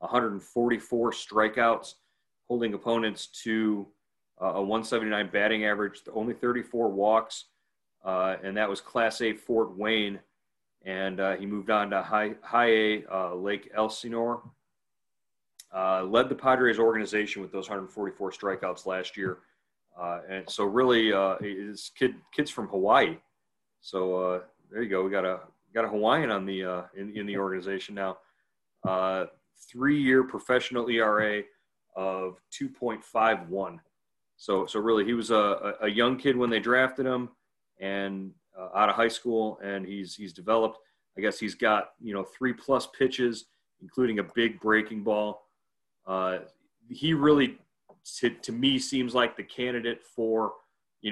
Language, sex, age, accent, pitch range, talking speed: English, male, 30-49, American, 95-115 Hz, 150 wpm